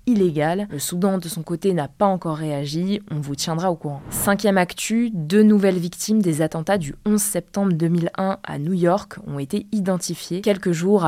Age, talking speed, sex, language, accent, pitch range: 20-39, 185 wpm, female, French, French, 160-195 Hz